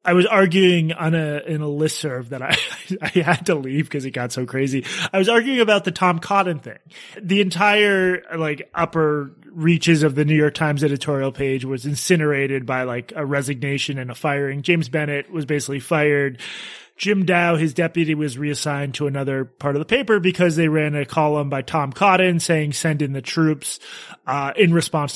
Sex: male